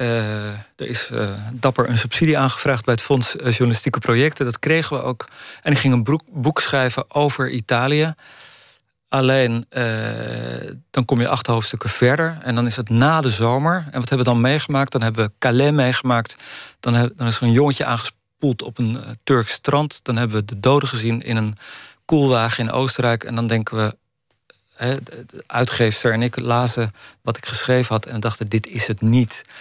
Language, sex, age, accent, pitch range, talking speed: Dutch, male, 40-59, Dutch, 115-135 Hz, 195 wpm